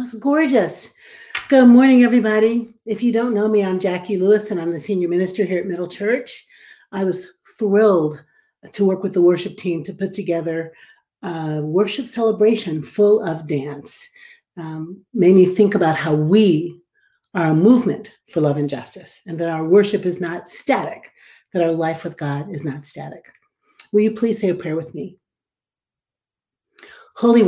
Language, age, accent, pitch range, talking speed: English, 40-59, American, 165-215 Hz, 170 wpm